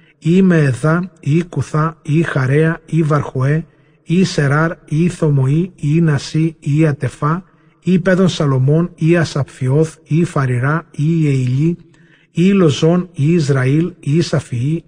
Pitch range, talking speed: 140-165 Hz, 120 wpm